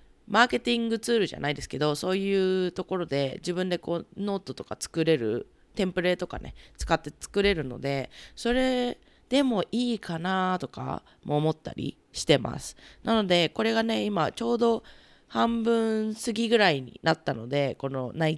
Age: 20-39